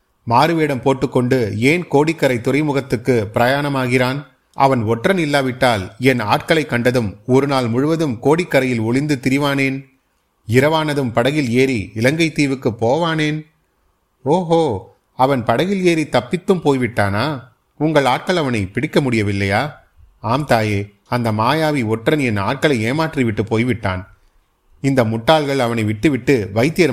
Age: 30-49